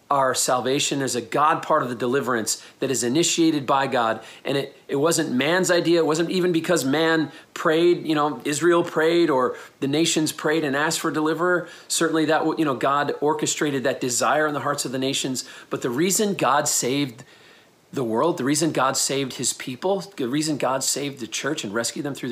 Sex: male